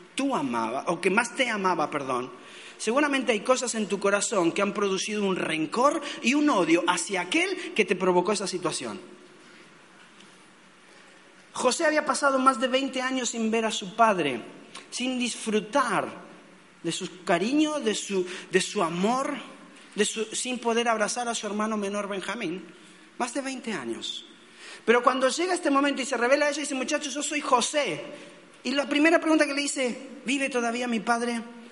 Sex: male